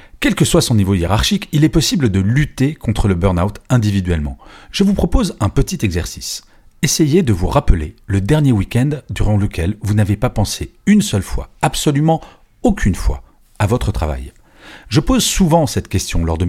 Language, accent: French, French